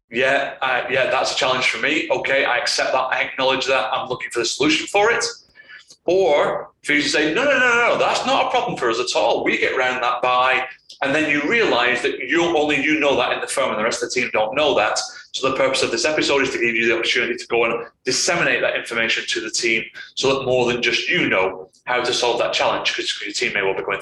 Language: English